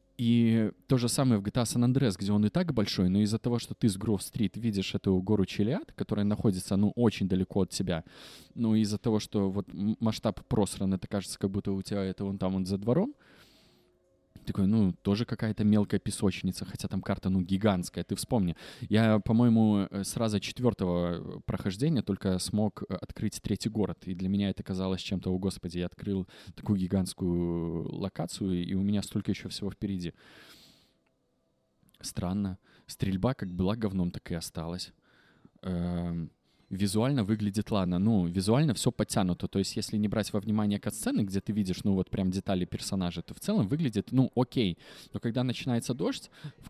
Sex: male